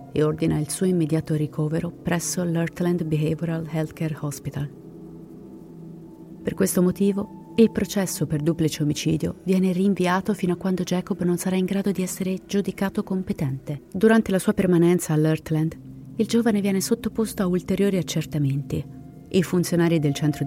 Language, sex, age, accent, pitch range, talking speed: Italian, female, 30-49, native, 150-185 Hz, 145 wpm